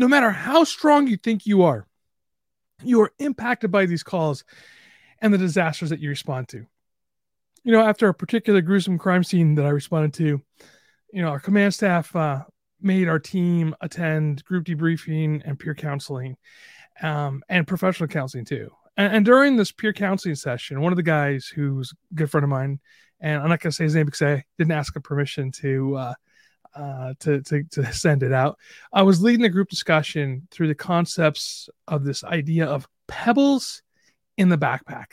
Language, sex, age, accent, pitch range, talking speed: English, male, 30-49, American, 145-200 Hz, 190 wpm